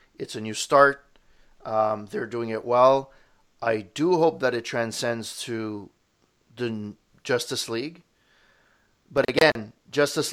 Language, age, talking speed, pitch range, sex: English, 30-49, 130 wpm, 115-135 Hz, male